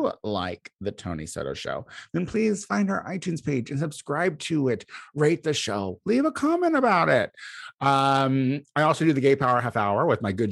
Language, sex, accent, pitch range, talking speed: English, male, American, 110-170 Hz, 200 wpm